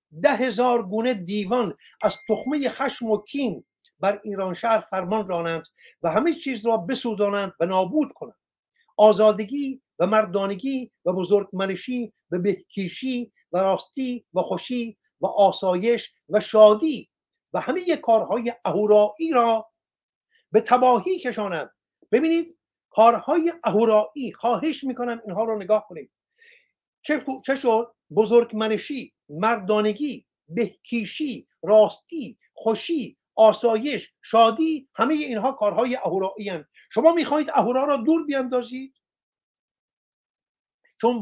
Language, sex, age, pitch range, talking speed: Persian, male, 50-69, 210-270 Hz, 110 wpm